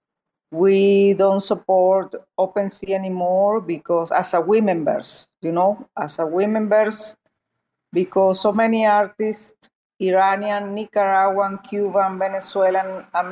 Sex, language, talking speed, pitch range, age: female, English, 115 wpm, 175-205 Hz, 40-59